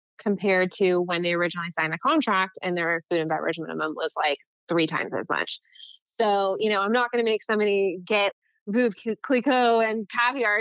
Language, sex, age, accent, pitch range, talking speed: English, female, 20-39, American, 185-230 Hz, 190 wpm